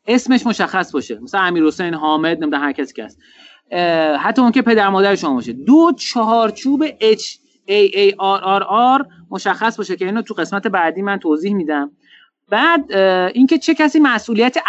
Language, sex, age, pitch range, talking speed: Persian, male, 30-49, 175-250 Hz, 165 wpm